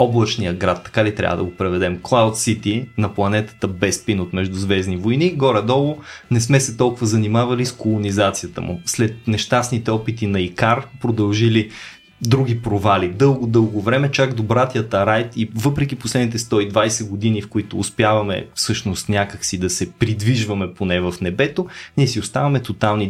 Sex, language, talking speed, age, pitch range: male, Bulgarian, 155 wpm, 20-39, 100-115 Hz